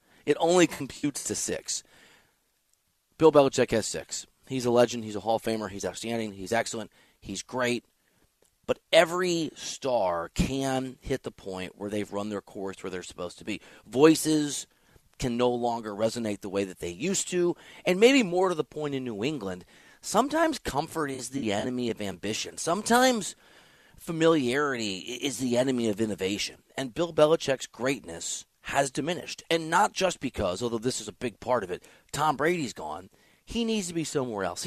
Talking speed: 175 wpm